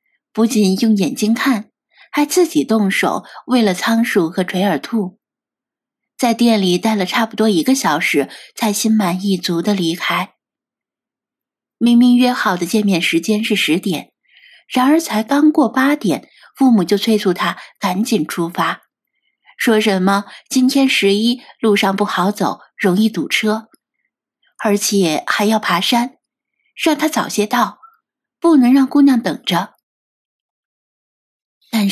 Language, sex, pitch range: Chinese, female, 195-265 Hz